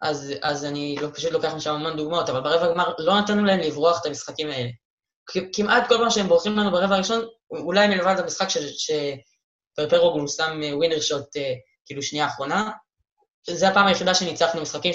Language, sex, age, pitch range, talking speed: Hebrew, female, 20-39, 145-200 Hz, 185 wpm